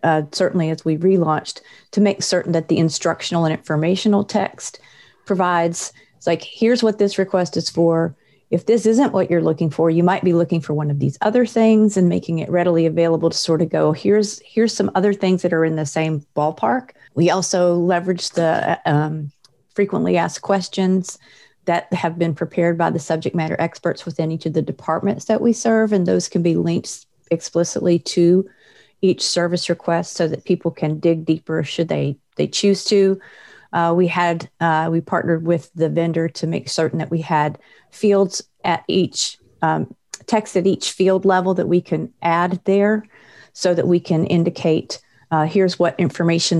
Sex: female